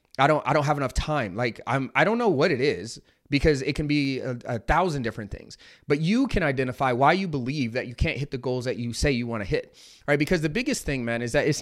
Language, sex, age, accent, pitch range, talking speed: English, male, 30-49, American, 125-160 Hz, 275 wpm